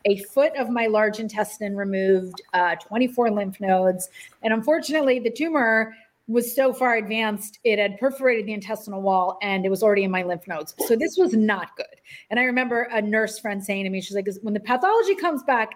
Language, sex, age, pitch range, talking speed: English, female, 30-49, 195-245 Hz, 205 wpm